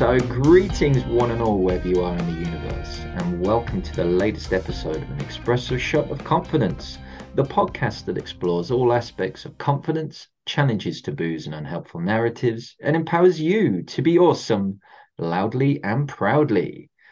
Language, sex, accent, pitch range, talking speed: English, male, British, 105-150 Hz, 160 wpm